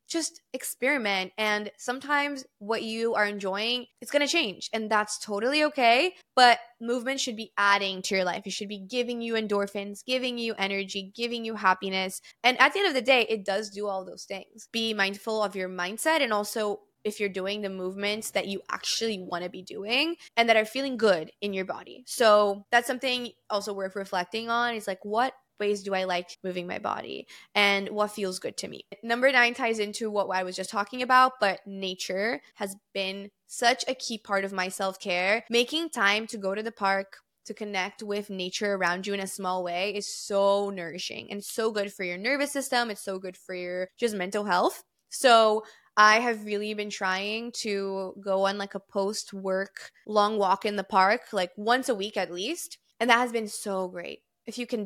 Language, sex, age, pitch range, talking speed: English, female, 20-39, 195-235 Hz, 205 wpm